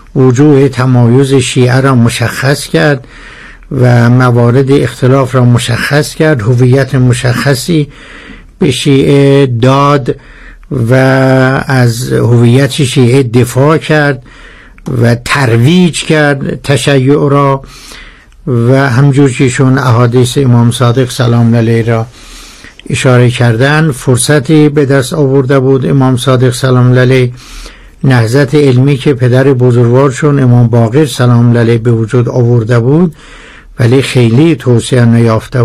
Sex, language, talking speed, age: male, Persian, 110 wpm, 60-79